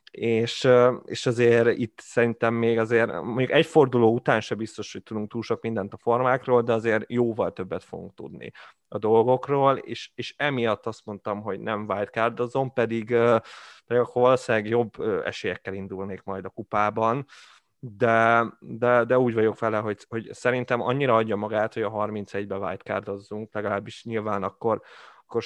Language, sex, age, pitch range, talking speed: Hungarian, male, 30-49, 105-120 Hz, 160 wpm